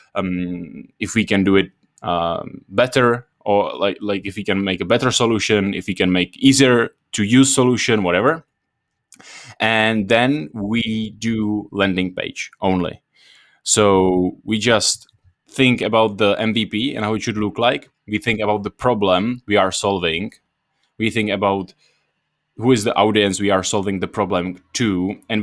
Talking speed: 165 wpm